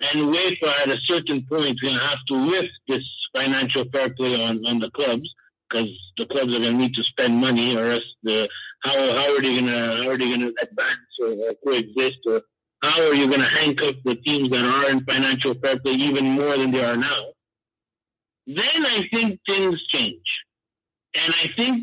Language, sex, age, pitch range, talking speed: Italian, male, 50-69, 130-175 Hz, 205 wpm